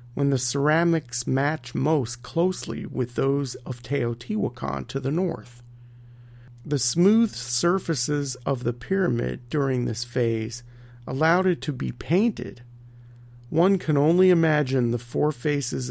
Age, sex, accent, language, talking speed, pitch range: 40-59, male, American, English, 130 wpm, 120-145 Hz